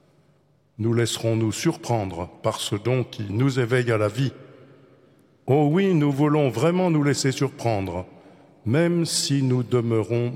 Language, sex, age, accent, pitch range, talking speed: French, male, 50-69, French, 105-140 Hz, 145 wpm